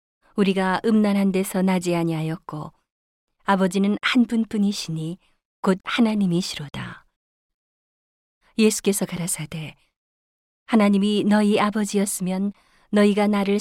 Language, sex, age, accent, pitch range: Korean, female, 40-59, native, 165-205 Hz